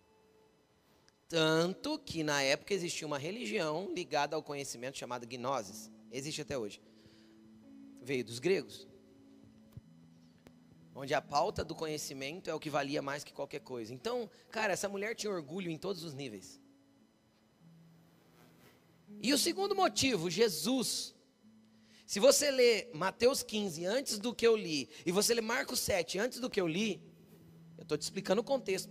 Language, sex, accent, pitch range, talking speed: Portuguese, male, Brazilian, 150-215 Hz, 150 wpm